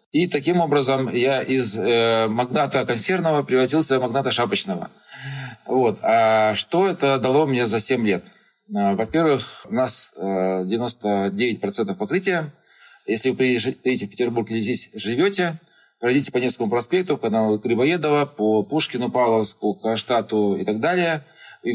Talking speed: 140 wpm